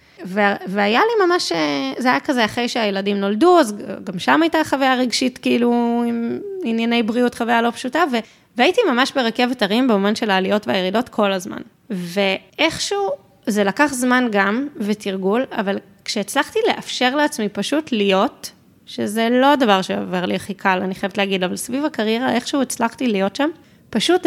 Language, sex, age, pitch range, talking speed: Hebrew, female, 20-39, 200-260 Hz, 160 wpm